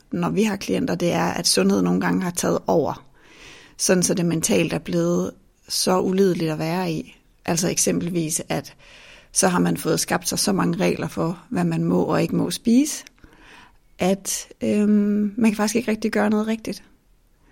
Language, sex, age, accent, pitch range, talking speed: Danish, female, 30-49, native, 160-195 Hz, 185 wpm